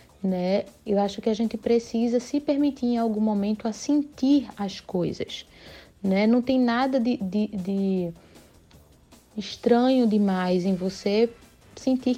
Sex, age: female, 20-39